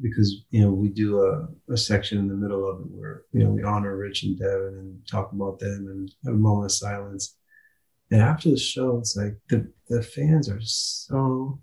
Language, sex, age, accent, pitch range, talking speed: English, male, 30-49, American, 105-130 Hz, 215 wpm